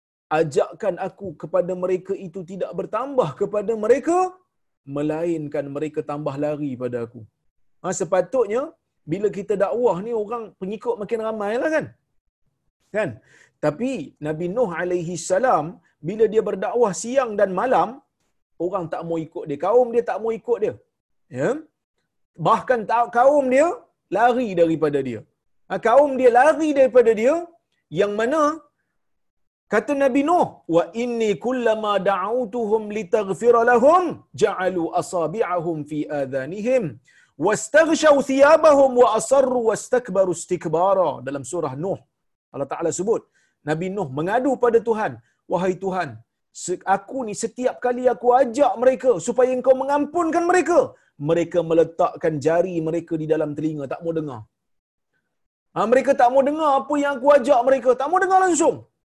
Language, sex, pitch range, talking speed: Malayalam, male, 170-260 Hz, 135 wpm